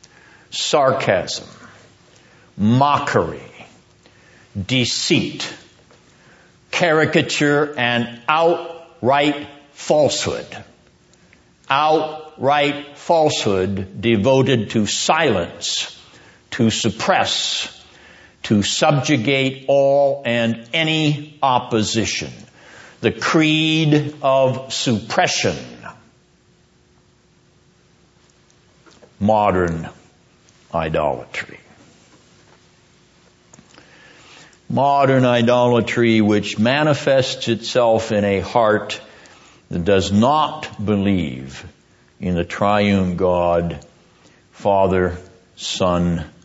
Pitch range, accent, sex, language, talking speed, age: 90-135 Hz, American, male, English, 55 wpm, 60-79